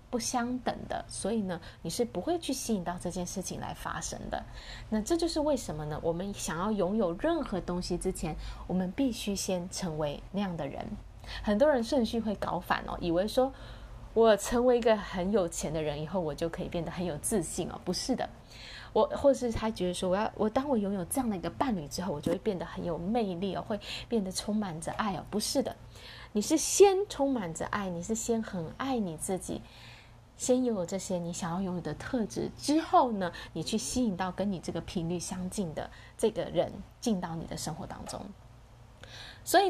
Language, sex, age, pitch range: Chinese, female, 20-39, 170-235 Hz